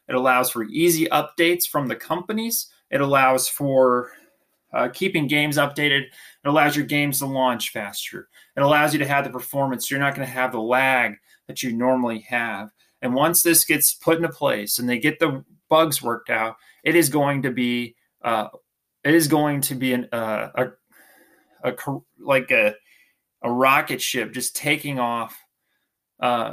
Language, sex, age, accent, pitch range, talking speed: English, male, 20-39, American, 120-160 Hz, 180 wpm